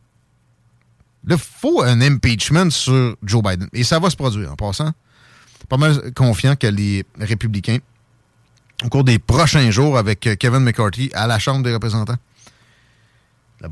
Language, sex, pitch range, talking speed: French, male, 110-135 Hz, 155 wpm